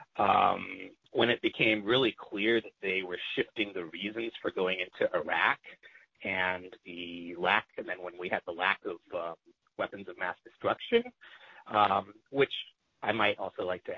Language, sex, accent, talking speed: English, male, American, 165 wpm